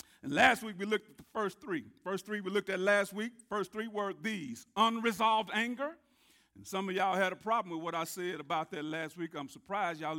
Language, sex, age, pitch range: English, male, 50-69, 185-255 Hz